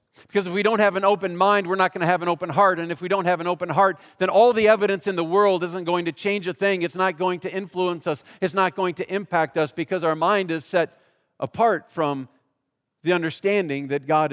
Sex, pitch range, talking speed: male, 160-195 Hz, 250 wpm